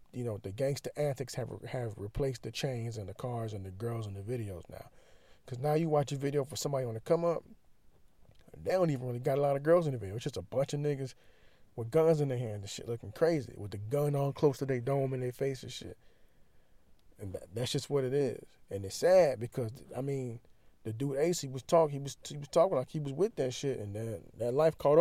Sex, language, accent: male, English, American